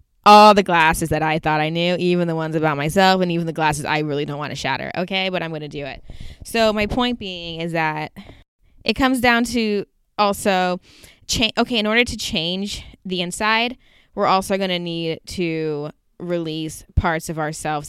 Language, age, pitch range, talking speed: English, 20-39, 150-190 Hz, 195 wpm